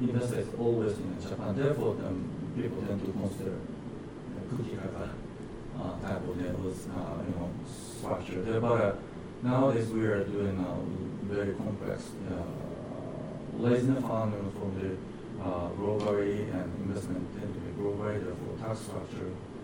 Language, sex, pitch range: Japanese, male, 95-125 Hz